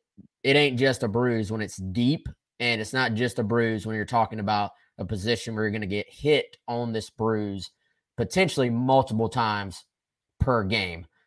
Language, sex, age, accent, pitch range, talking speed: English, male, 20-39, American, 110-135 Hz, 180 wpm